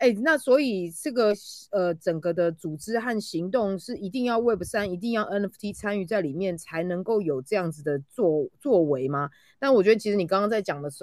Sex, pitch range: female, 155-215 Hz